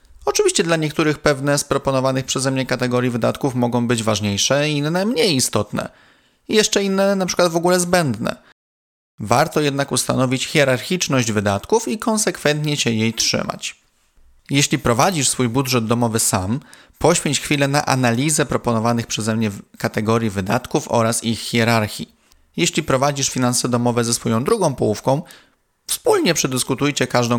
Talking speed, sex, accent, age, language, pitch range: 140 wpm, male, native, 30-49, Polish, 115-150 Hz